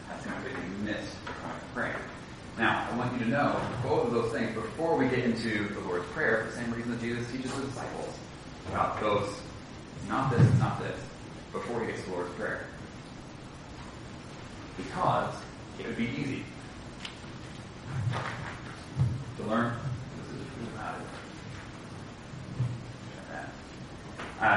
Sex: male